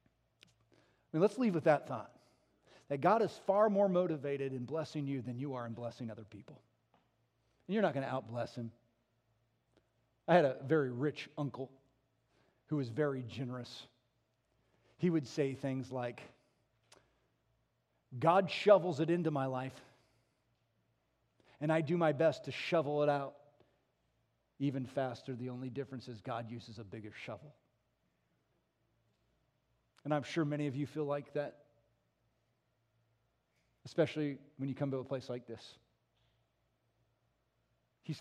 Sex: male